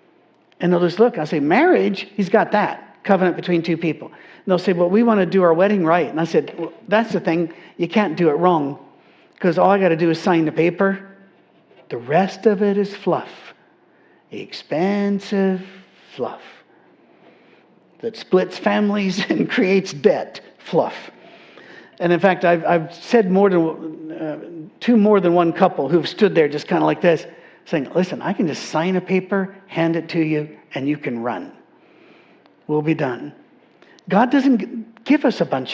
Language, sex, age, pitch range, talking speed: English, male, 50-69, 160-195 Hz, 185 wpm